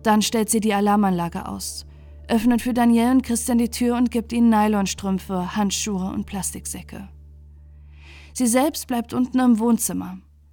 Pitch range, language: 170-230 Hz, German